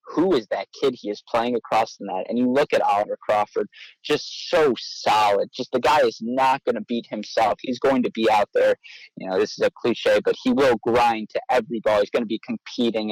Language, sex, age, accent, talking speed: English, male, 30-49, American, 240 wpm